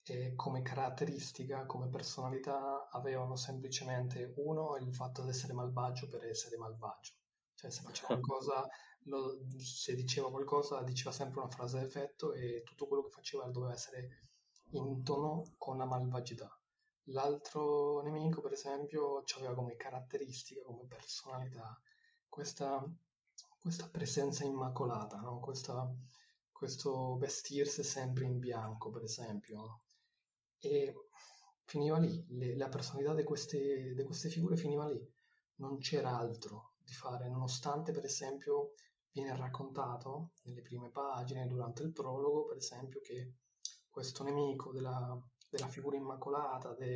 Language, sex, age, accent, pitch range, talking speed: Italian, male, 20-39, native, 125-150 Hz, 130 wpm